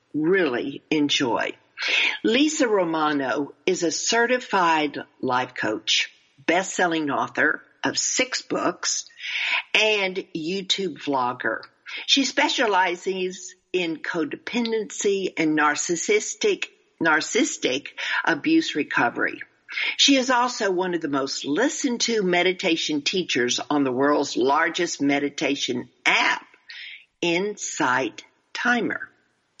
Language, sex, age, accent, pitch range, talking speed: English, female, 50-69, American, 155-260 Hz, 90 wpm